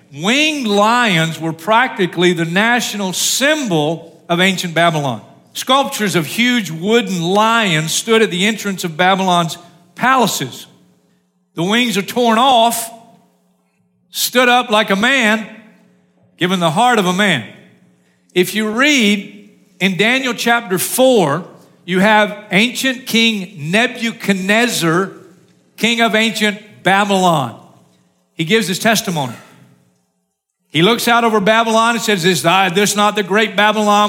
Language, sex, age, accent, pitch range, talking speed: English, male, 50-69, American, 170-230 Hz, 125 wpm